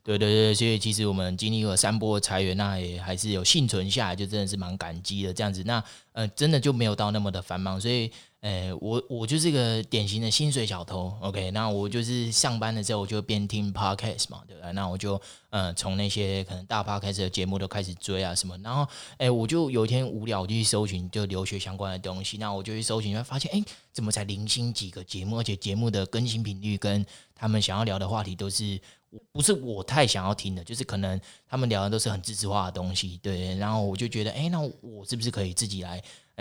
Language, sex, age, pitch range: Chinese, male, 20-39, 95-110 Hz